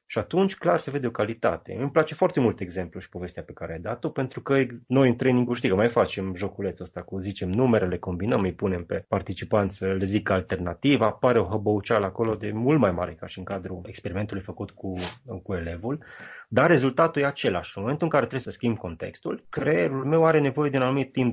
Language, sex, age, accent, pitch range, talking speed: Romanian, male, 30-49, native, 95-125 Hz, 220 wpm